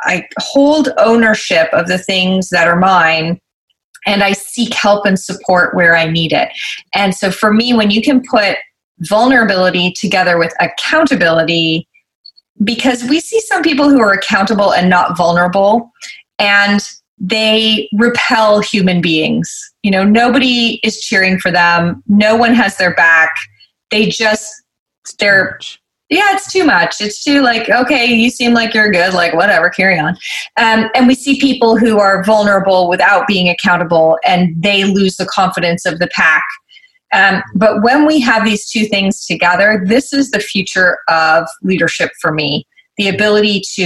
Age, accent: 20-39, American